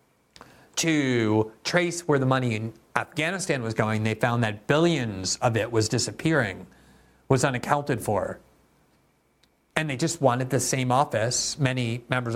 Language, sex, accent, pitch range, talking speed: English, male, American, 115-145 Hz, 140 wpm